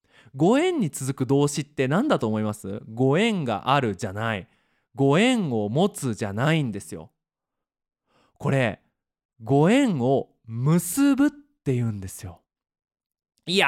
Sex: male